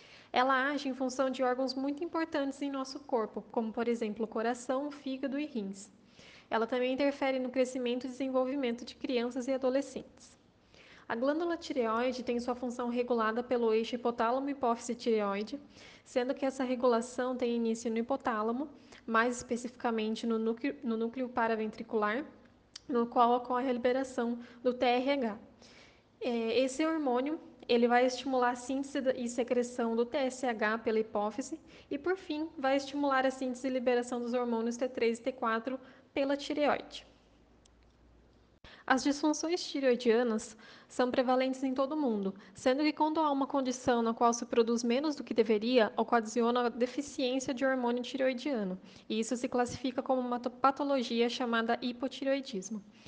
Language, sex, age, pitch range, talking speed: Portuguese, female, 10-29, 235-270 Hz, 145 wpm